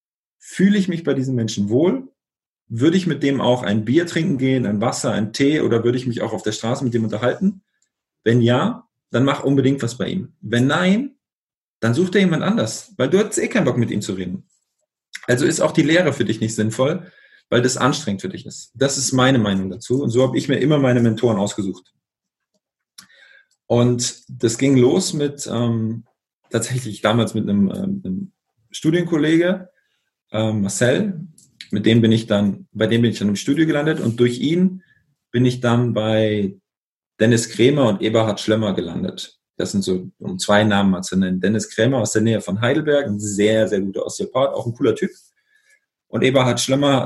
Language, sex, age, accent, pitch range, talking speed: German, male, 40-59, German, 110-155 Hz, 195 wpm